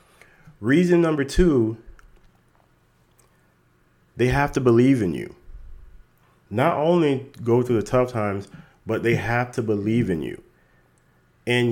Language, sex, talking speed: English, male, 125 wpm